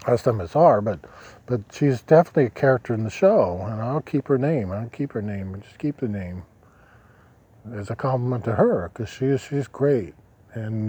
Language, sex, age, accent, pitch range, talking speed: English, male, 40-59, American, 105-130 Hz, 200 wpm